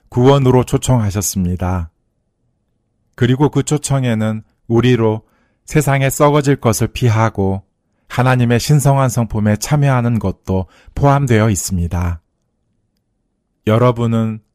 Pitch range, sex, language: 100-130 Hz, male, Korean